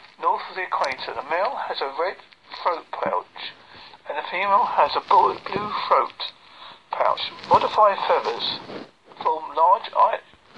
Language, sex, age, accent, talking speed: English, male, 50-69, British, 125 wpm